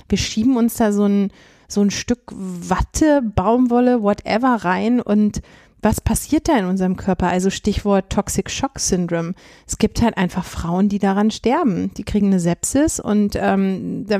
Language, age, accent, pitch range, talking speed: German, 30-49, German, 185-220 Hz, 170 wpm